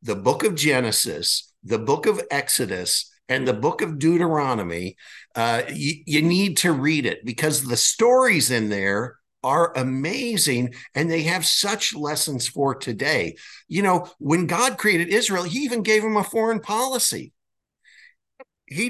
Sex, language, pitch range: male, English, 150-210 Hz